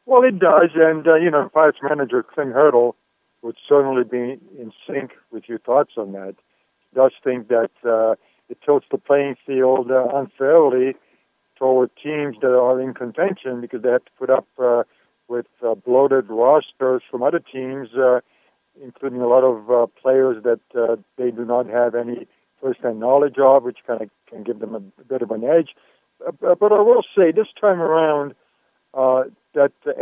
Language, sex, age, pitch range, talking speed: English, male, 60-79, 125-150 Hz, 185 wpm